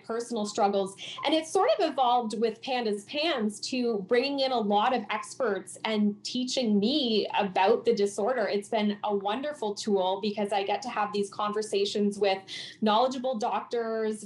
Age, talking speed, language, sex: 20-39, 160 wpm, English, female